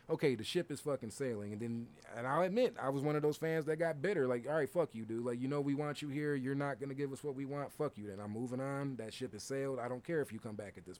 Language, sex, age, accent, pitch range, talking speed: English, male, 30-49, American, 115-135 Hz, 325 wpm